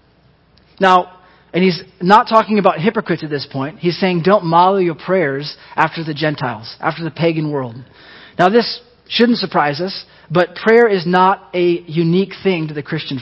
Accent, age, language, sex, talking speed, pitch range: American, 30-49, English, male, 170 wpm, 150-185 Hz